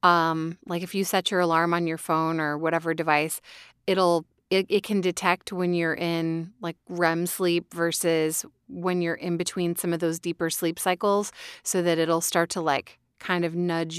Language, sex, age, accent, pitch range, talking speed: English, female, 30-49, American, 165-200 Hz, 190 wpm